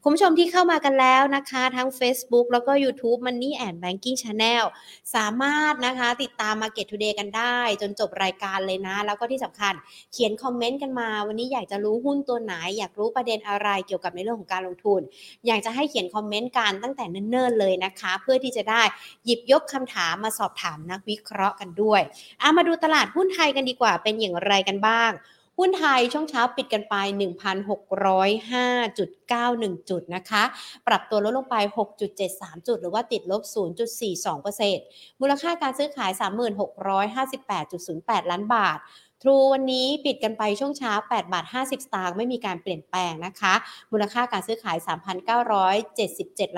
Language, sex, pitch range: Thai, female, 195-245 Hz